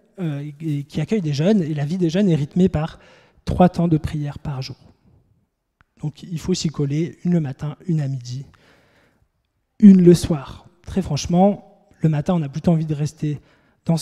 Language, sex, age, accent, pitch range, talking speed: French, male, 20-39, French, 150-180 Hz, 190 wpm